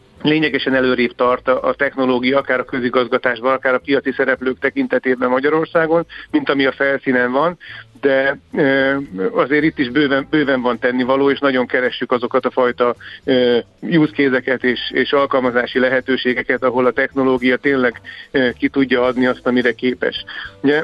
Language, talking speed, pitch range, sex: Hungarian, 140 wpm, 125-140 Hz, male